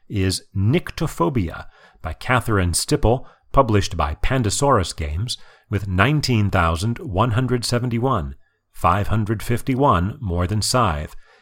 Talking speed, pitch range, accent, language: 80 wpm, 95-130 Hz, American, English